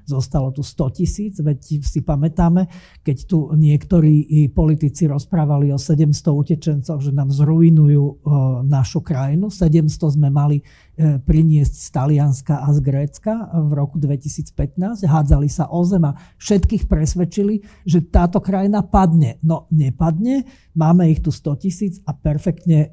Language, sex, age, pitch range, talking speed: Slovak, male, 40-59, 145-170 Hz, 135 wpm